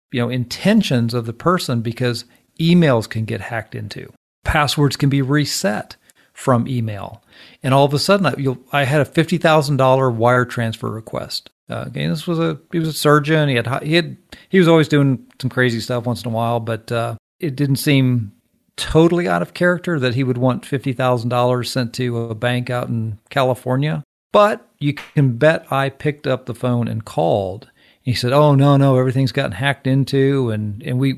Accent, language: American, English